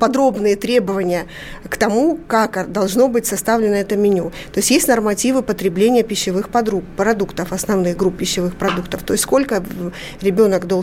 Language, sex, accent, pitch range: Russian, female, native, 185-225 Hz